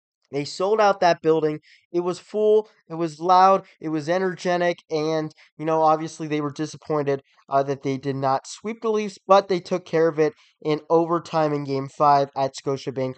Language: English